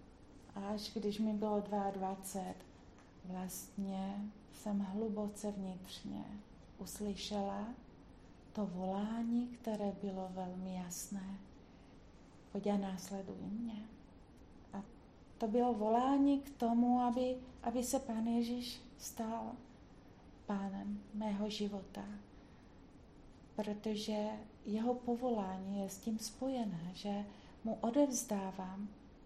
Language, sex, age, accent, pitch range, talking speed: Czech, female, 40-59, native, 190-220 Hz, 90 wpm